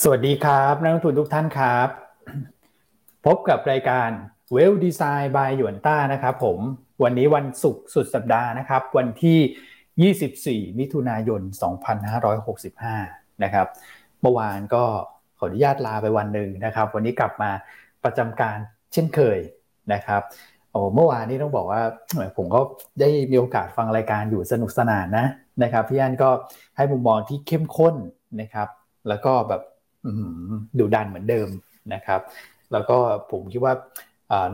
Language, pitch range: Thai, 105-135 Hz